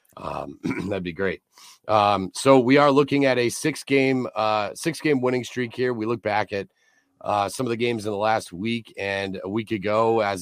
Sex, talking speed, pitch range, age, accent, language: male, 215 wpm, 95-120 Hz, 30-49, American, English